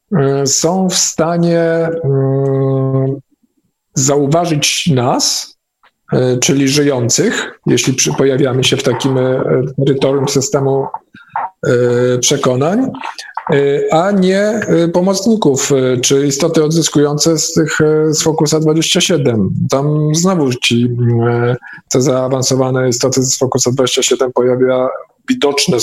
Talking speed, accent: 105 wpm, native